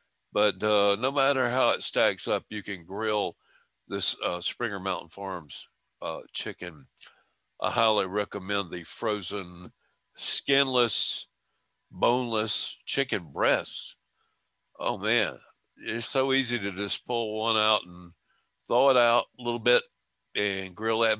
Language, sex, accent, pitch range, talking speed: English, male, American, 105-145 Hz, 135 wpm